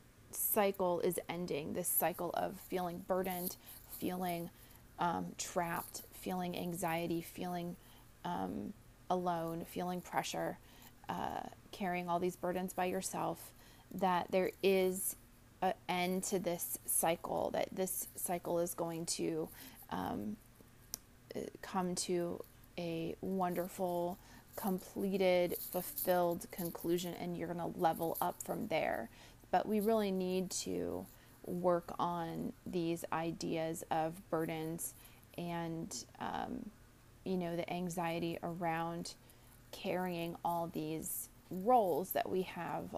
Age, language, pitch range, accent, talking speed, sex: 30-49, English, 165-185 Hz, American, 110 wpm, female